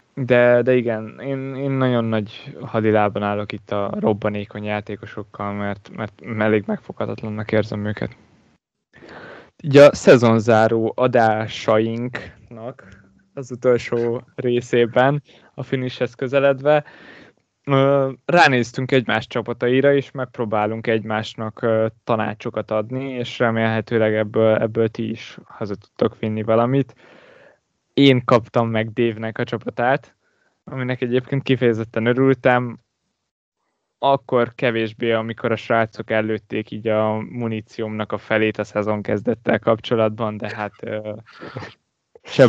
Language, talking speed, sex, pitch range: Hungarian, 105 wpm, male, 110-125 Hz